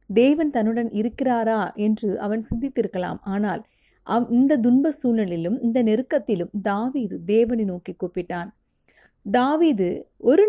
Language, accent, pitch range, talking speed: Tamil, native, 190-235 Hz, 95 wpm